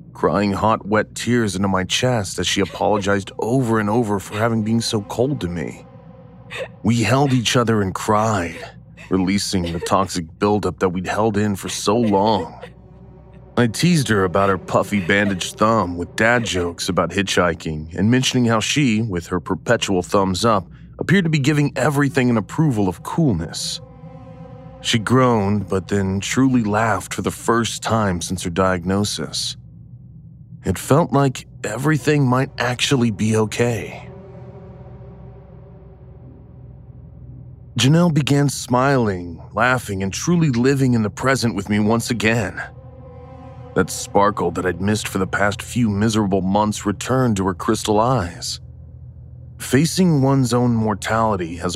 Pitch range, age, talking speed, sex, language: 100-130 Hz, 30-49, 145 wpm, male, English